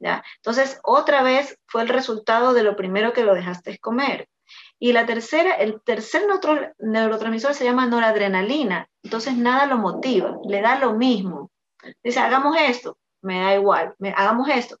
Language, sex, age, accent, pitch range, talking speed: Spanish, female, 30-49, American, 210-275 Hz, 165 wpm